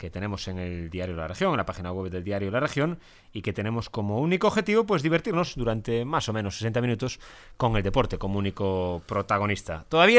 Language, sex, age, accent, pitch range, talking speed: Spanish, male, 30-49, Spanish, 100-140 Hz, 210 wpm